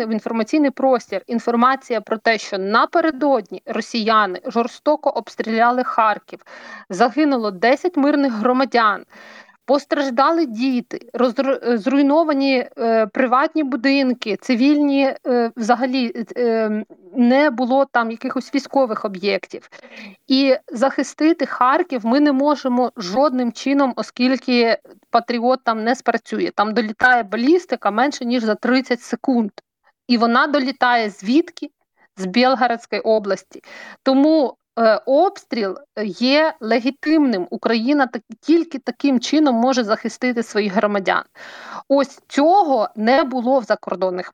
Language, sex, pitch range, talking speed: Ukrainian, female, 225-275 Hz, 110 wpm